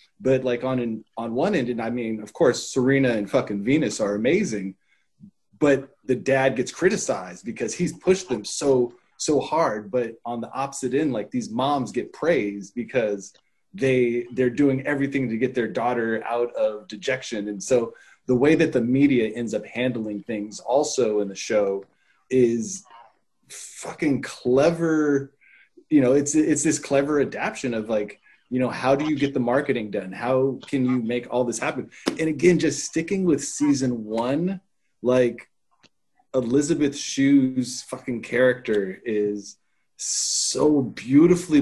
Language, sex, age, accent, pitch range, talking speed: English, male, 20-39, American, 120-145 Hz, 160 wpm